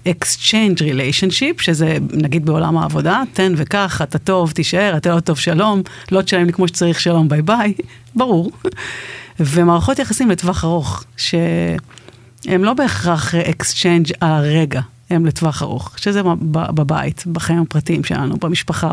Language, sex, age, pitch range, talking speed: Hebrew, female, 40-59, 155-190 Hz, 135 wpm